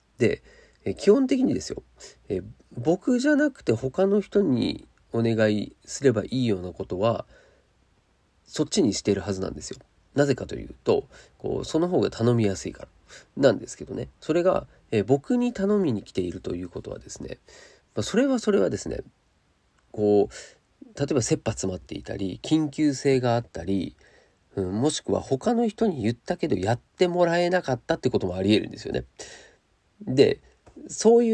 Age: 40-59